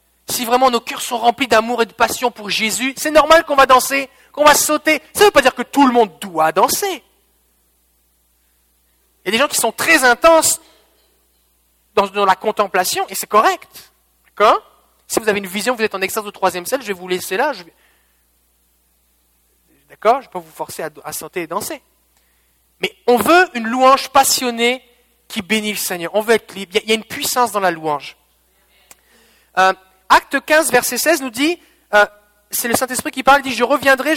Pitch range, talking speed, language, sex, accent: 180-260 Hz, 205 wpm, French, male, French